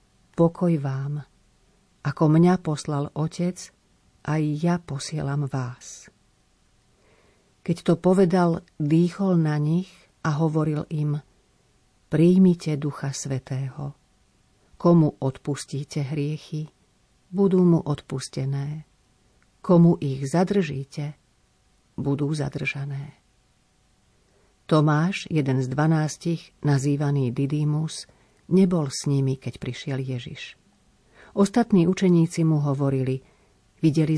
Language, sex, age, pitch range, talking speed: Slovak, female, 40-59, 140-170 Hz, 90 wpm